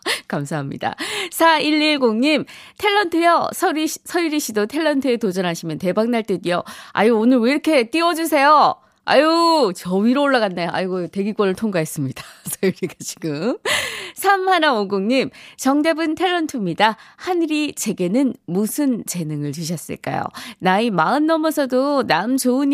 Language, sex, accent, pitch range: Korean, female, native, 180-295 Hz